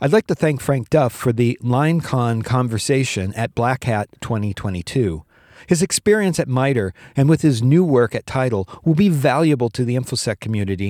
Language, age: English, 40-59